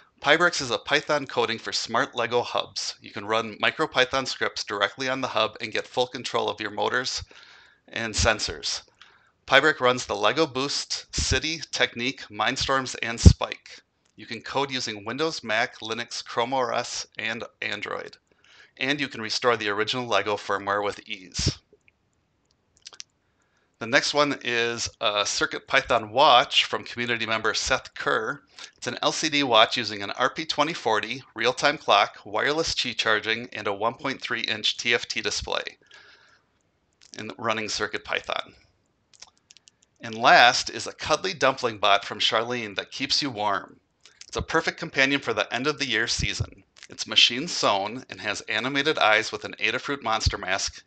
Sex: male